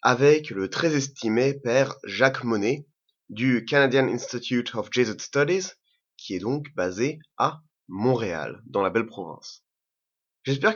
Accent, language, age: French, French, 30-49